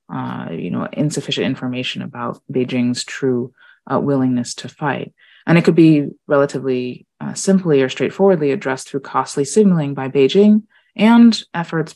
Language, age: English, 30-49